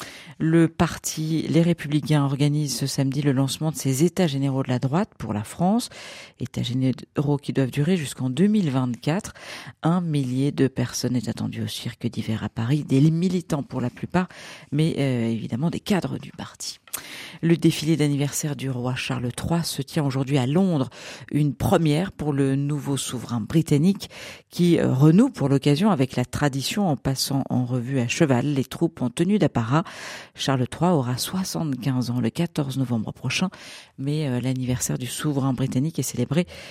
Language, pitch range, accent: French, 130-165 Hz, French